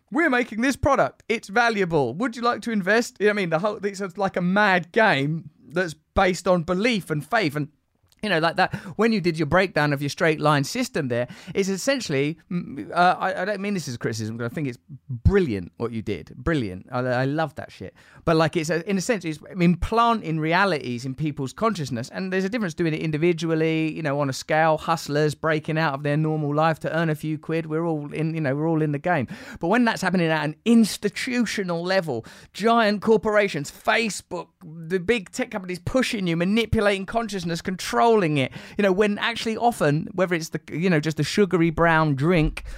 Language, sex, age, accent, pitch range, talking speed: English, male, 30-49, British, 150-200 Hz, 210 wpm